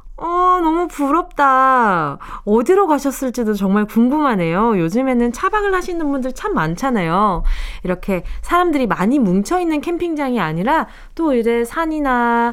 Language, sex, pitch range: Korean, female, 195-305 Hz